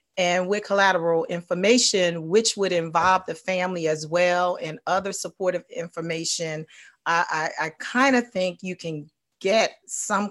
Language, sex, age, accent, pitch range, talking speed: English, female, 40-59, American, 160-195 Hz, 145 wpm